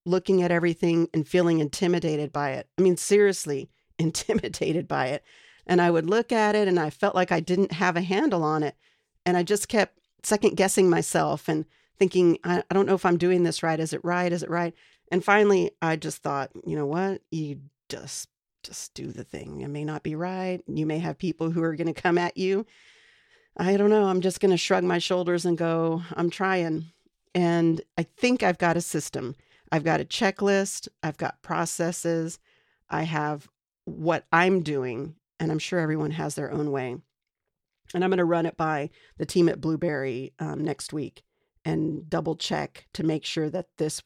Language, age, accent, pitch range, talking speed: English, 40-59, American, 160-185 Hz, 200 wpm